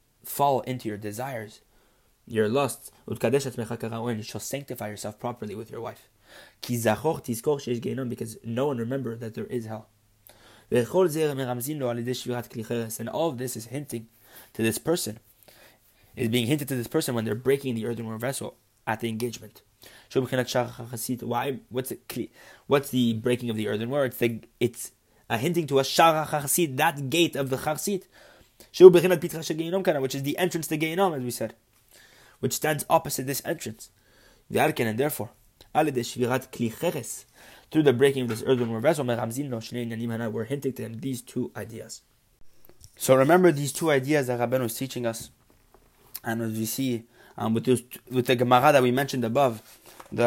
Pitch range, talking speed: 115-140 Hz, 150 wpm